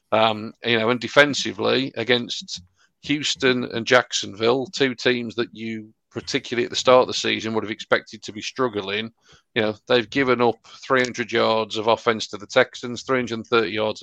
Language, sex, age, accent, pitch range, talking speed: English, male, 40-59, British, 105-120 Hz, 170 wpm